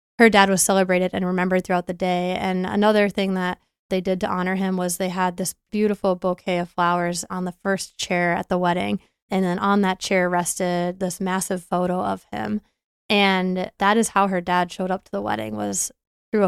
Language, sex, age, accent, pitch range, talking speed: English, female, 20-39, American, 185-210 Hz, 210 wpm